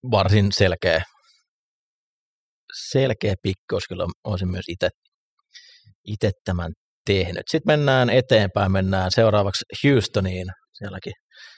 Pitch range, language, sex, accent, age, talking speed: 95-110 Hz, Finnish, male, native, 30-49, 90 wpm